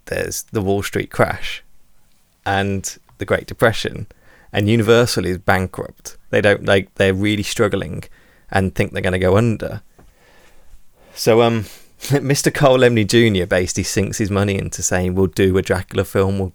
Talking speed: 160 wpm